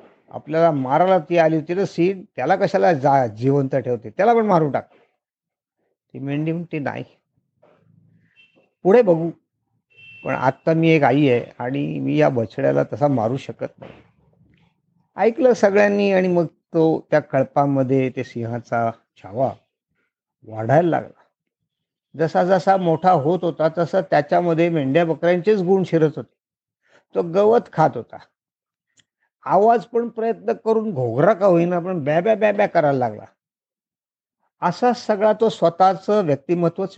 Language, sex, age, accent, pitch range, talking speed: Marathi, male, 50-69, native, 140-190 Hz, 130 wpm